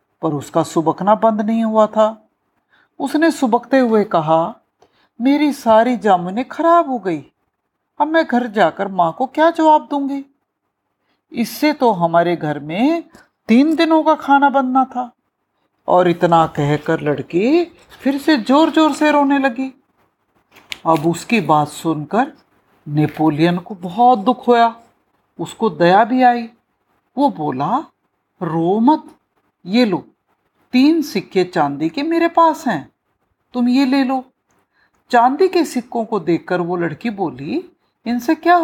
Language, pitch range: Hindi, 175-280 Hz